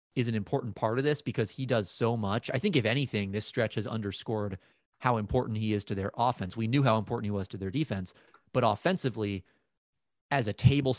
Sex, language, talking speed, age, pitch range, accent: male, English, 220 wpm, 30-49, 105-130 Hz, American